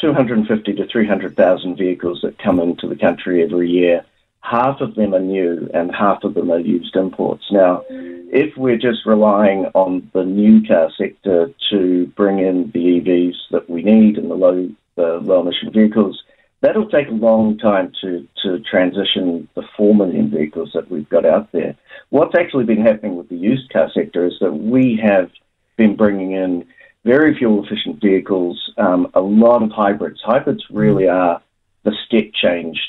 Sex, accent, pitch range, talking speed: male, Australian, 90-110 Hz, 175 wpm